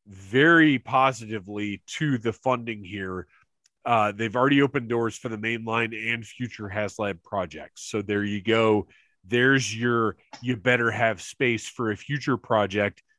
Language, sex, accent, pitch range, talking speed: English, male, American, 110-150 Hz, 145 wpm